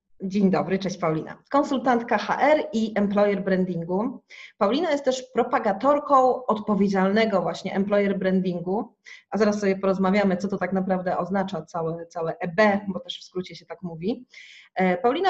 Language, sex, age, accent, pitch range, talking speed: Polish, female, 30-49, native, 190-240 Hz, 145 wpm